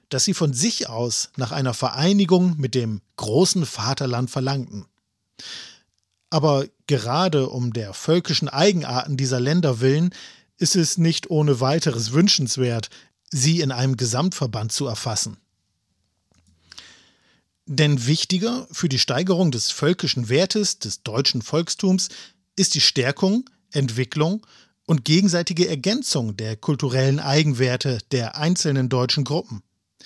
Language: German